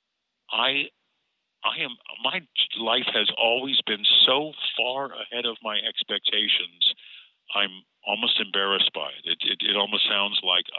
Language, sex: English, male